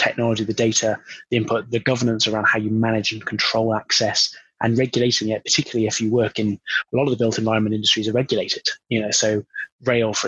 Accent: British